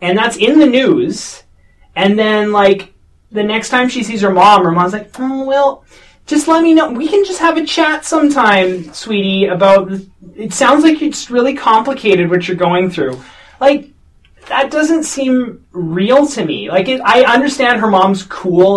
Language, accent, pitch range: English, American, 160-225 Hz